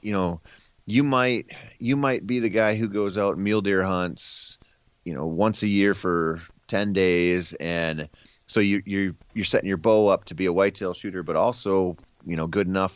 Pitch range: 85-110 Hz